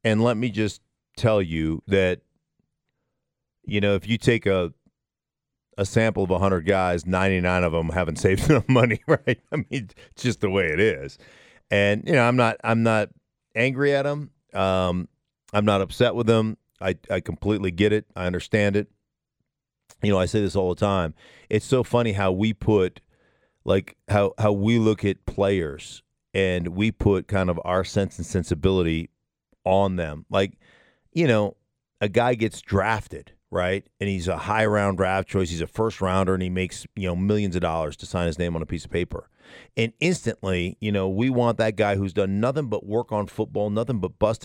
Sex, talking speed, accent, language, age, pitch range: male, 195 wpm, American, English, 40-59, 95-115 Hz